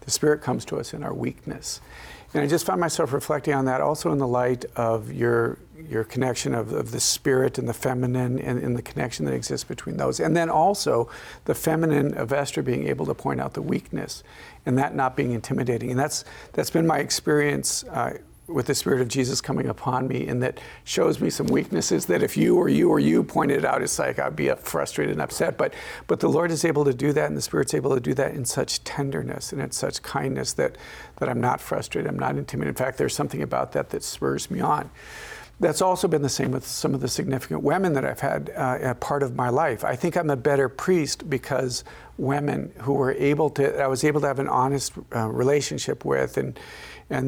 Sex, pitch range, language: male, 125-150 Hz, English